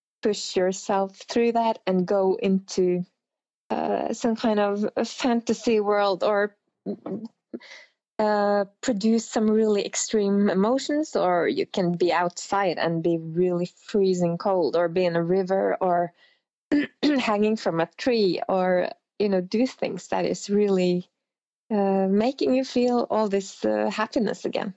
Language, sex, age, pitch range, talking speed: English, female, 20-39, 195-230 Hz, 140 wpm